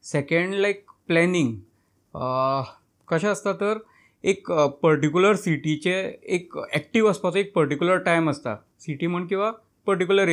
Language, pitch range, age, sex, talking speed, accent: Hindi, 145-185 Hz, 20-39, male, 85 wpm, native